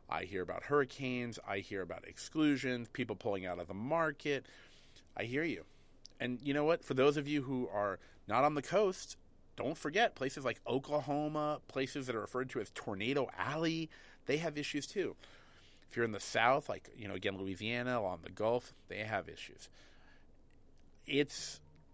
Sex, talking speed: male, 180 wpm